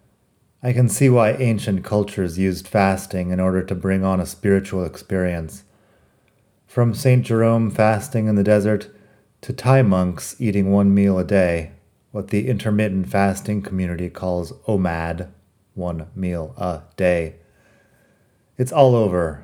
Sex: male